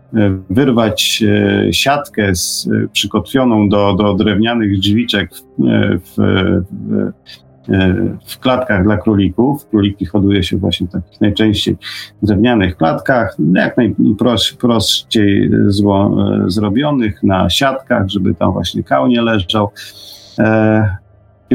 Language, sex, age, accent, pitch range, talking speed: Polish, male, 40-59, native, 100-120 Hz, 95 wpm